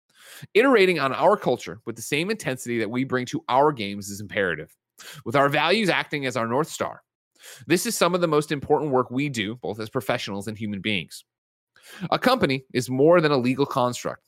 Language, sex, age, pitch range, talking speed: English, male, 30-49, 110-150 Hz, 200 wpm